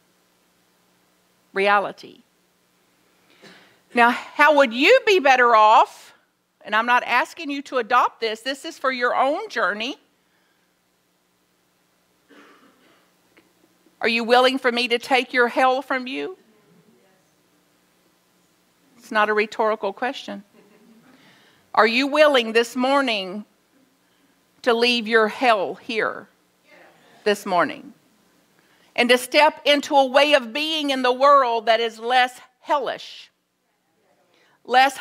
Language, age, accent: English, 50-69, American